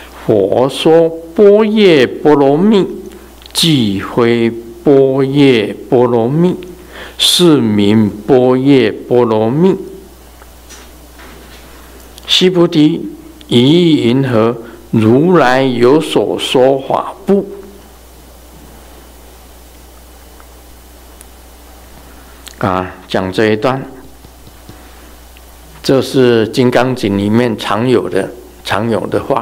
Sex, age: male, 60-79